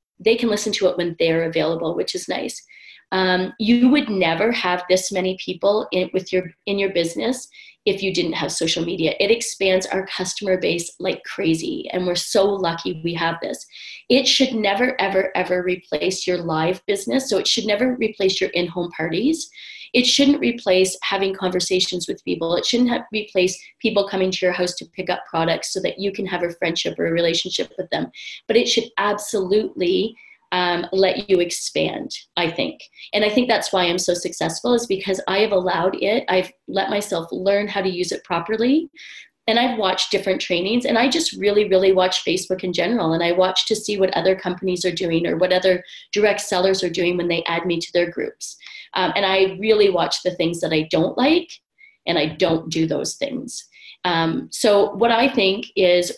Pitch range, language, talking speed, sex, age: 180-220 Hz, English, 200 wpm, female, 30-49